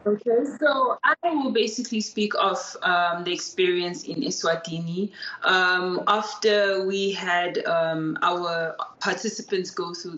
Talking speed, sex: 125 wpm, female